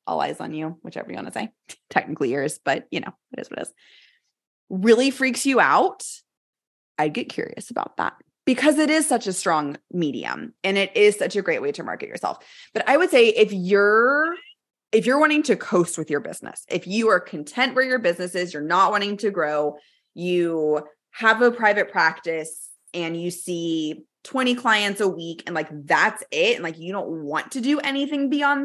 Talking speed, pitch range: 205 wpm, 160-245 Hz